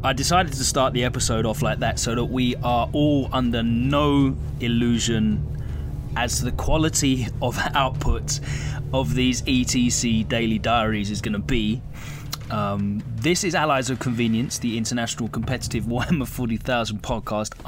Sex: male